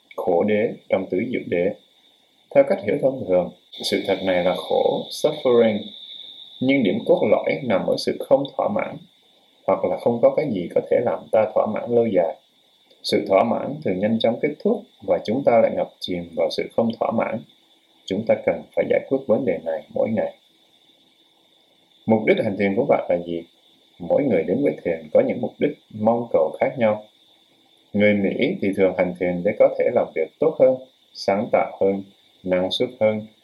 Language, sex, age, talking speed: Vietnamese, male, 20-39, 200 wpm